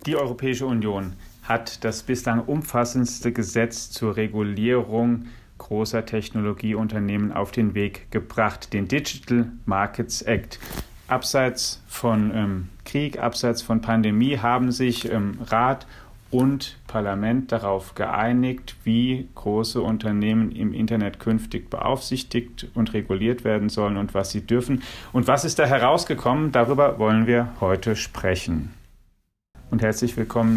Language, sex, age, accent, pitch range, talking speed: German, male, 40-59, German, 110-120 Hz, 125 wpm